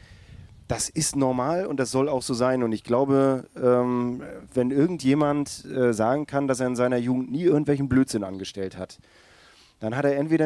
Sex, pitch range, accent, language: male, 115-135 Hz, German, German